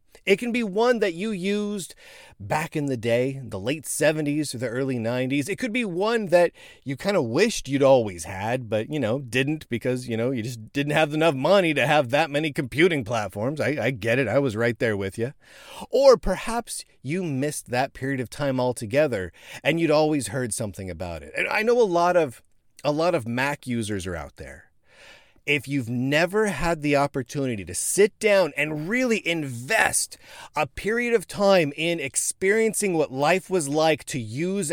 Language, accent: English, American